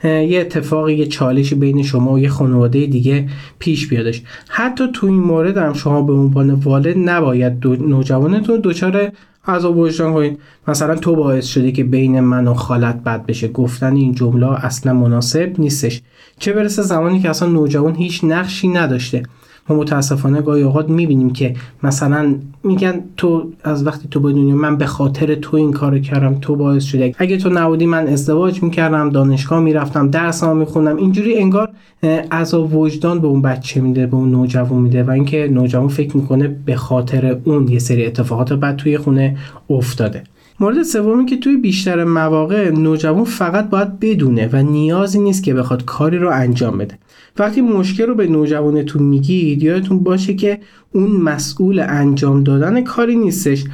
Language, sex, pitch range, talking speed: Persian, male, 135-175 Hz, 165 wpm